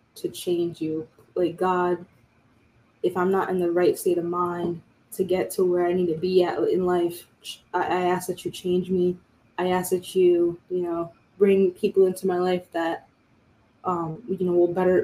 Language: English